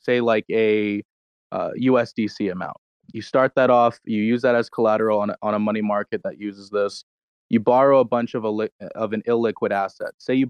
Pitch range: 105-125 Hz